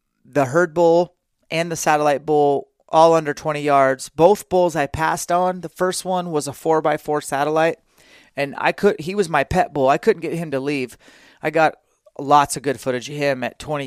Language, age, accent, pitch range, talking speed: English, 30-49, American, 135-170 Hz, 210 wpm